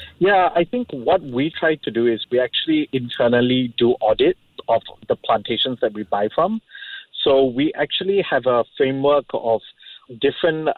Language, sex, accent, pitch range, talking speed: English, male, Malaysian, 115-145 Hz, 160 wpm